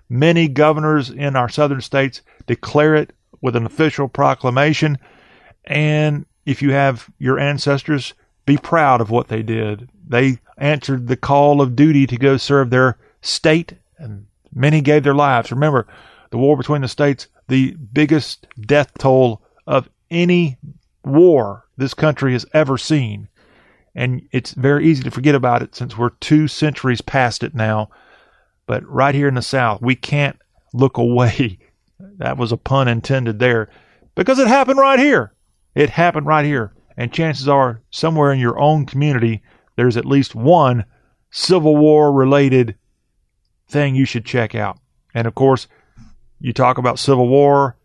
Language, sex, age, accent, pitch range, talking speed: English, male, 40-59, American, 125-150 Hz, 160 wpm